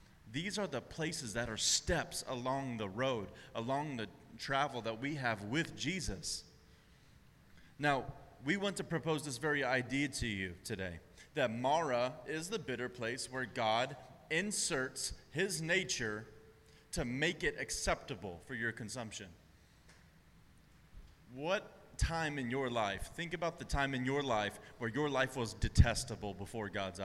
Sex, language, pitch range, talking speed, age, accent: male, English, 115-160 Hz, 145 wpm, 30-49, American